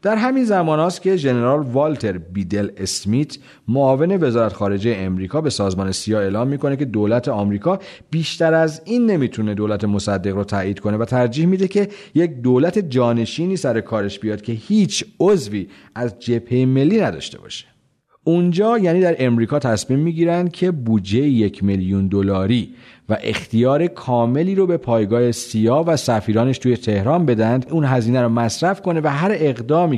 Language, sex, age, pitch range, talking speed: Persian, male, 40-59, 105-150 Hz, 155 wpm